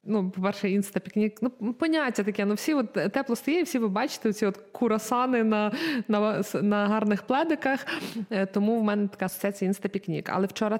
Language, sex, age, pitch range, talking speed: Ukrainian, female, 20-39, 185-240 Hz, 165 wpm